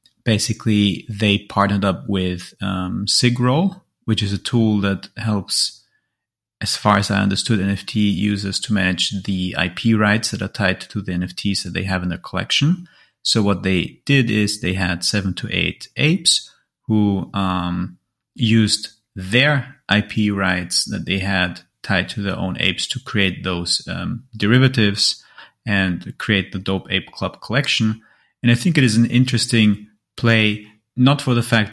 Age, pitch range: 30-49, 95-115 Hz